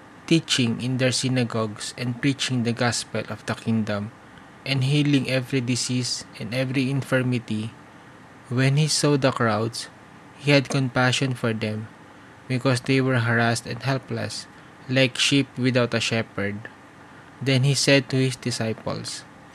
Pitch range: 115-135 Hz